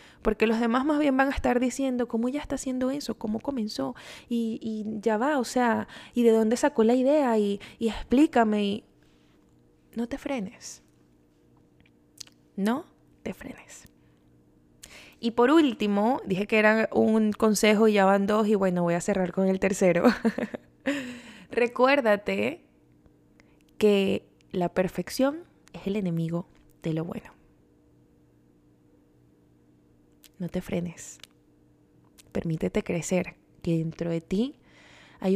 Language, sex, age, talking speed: Spanish, female, 20-39, 130 wpm